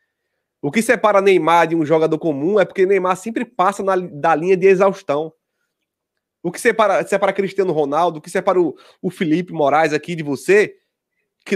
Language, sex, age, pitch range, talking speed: Portuguese, male, 20-39, 160-210 Hz, 180 wpm